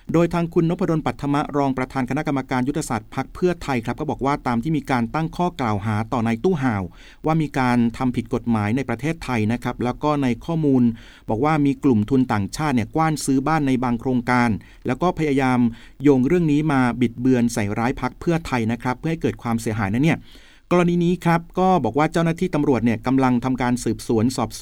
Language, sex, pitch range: Thai, male, 120-160 Hz